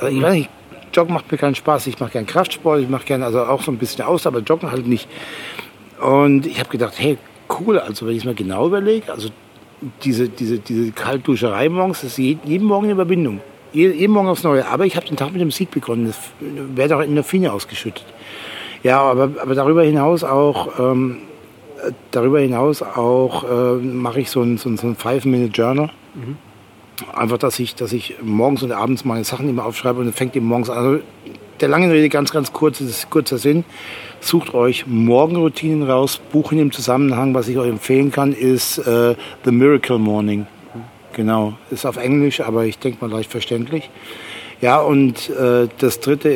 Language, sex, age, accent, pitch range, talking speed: German, male, 60-79, German, 120-145 Hz, 200 wpm